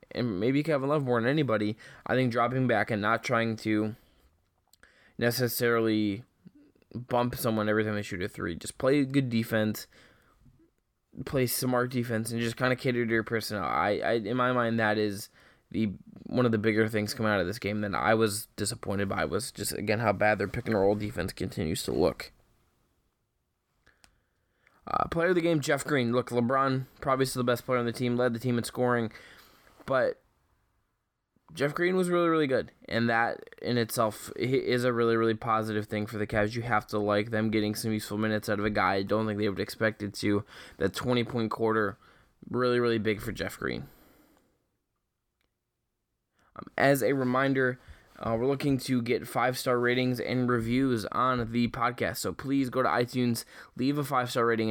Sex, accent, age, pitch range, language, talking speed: male, American, 20-39, 105-125 Hz, English, 190 wpm